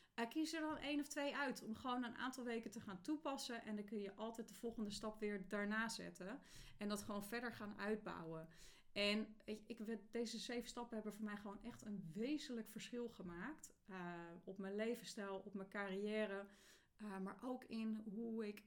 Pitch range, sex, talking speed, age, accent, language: 195-235 Hz, female, 195 wpm, 30-49, Dutch, Dutch